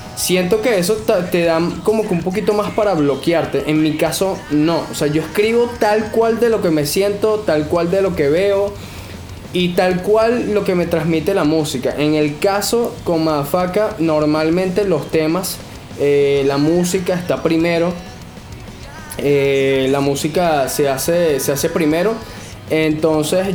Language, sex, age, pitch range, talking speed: Spanish, male, 10-29, 140-185 Hz, 160 wpm